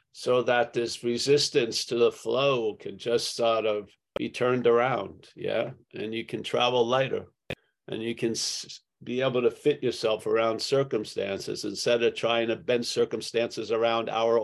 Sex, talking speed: male, 160 wpm